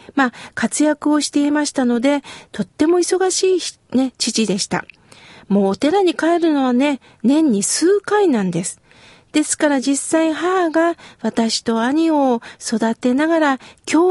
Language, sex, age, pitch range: Japanese, female, 50-69, 225-310 Hz